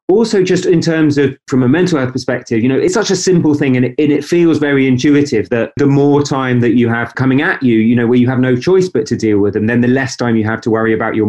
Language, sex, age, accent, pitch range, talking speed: English, male, 30-49, British, 110-145 Hz, 290 wpm